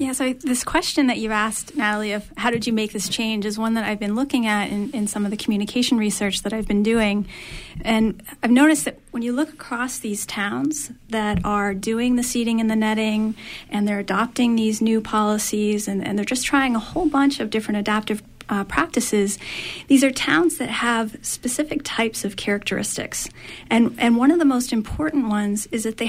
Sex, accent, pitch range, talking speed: female, American, 215-255 Hz, 205 wpm